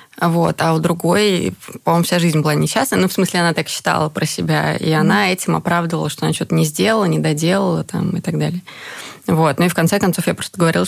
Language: Russian